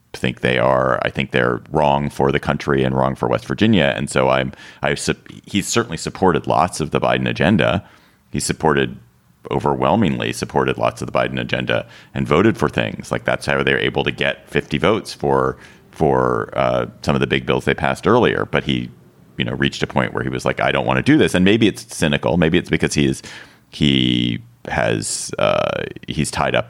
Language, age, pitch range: English, 40-59, 65-75 Hz